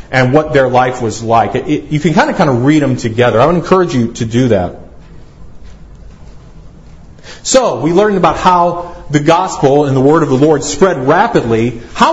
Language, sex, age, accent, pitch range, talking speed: English, male, 40-59, American, 130-180 Hz, 200 wpm